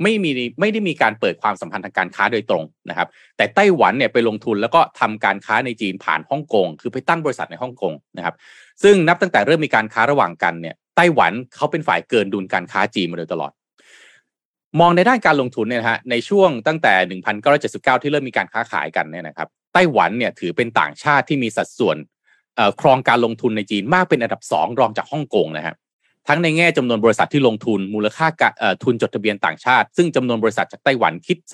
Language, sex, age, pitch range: Thai, male, 30-49, 105-170 Hz